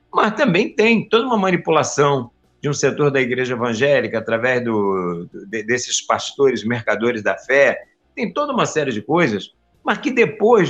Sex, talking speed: male, 165 wpm